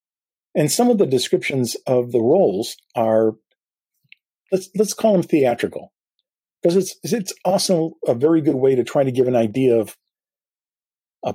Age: 50-69